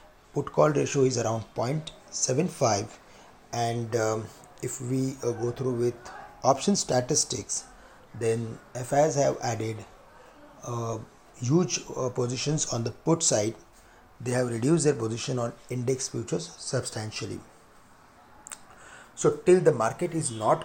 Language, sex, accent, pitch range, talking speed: English, male, Indian, 115-145 Hz, 125 wpm